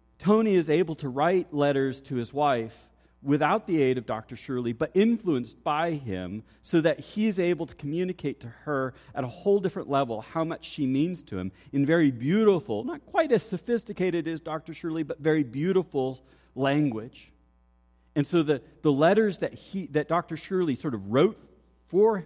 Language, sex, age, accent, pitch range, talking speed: English, male, 40-59, American, 130-180 Hz, 175 wpm